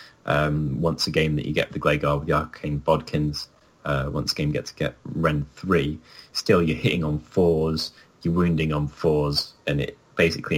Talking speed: 195 wpm